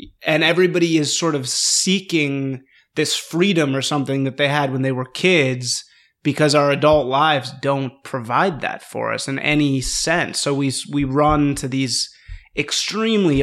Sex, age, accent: male, 30-49, American